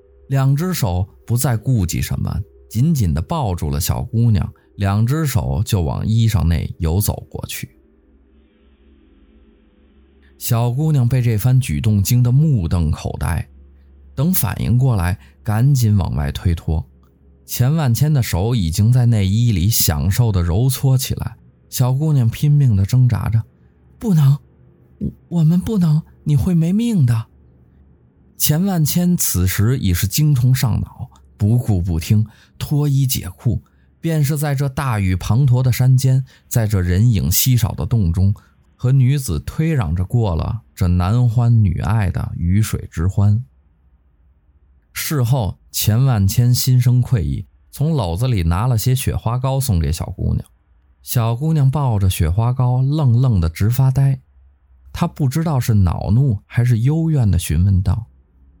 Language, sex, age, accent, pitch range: English, male, 20-39, Chinese, 85-130 Hz